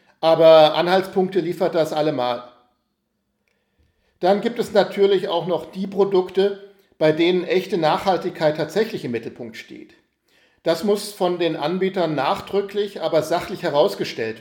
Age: 50-69